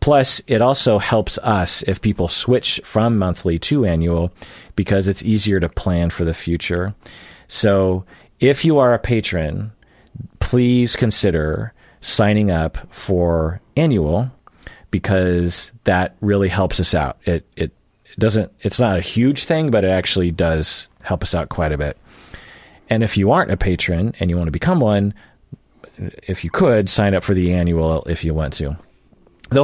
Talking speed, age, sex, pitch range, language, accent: 165 wpm, 40-59, male, 80-100 Hz, English, American